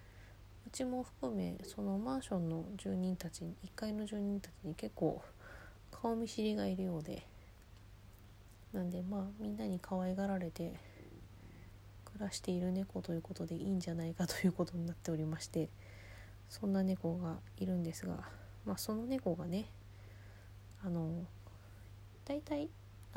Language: Japanese